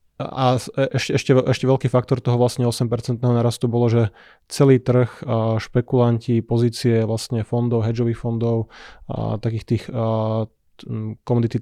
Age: 20-39